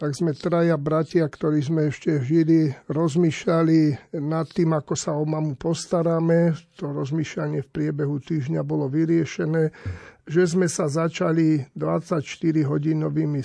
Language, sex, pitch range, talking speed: Slovak, male, 150-175 Hz, 125 wpm